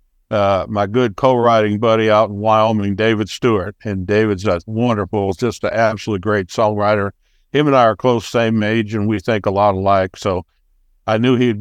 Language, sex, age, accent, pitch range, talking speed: English, male, 60-79, American, 100-120 Hz, 185 wpm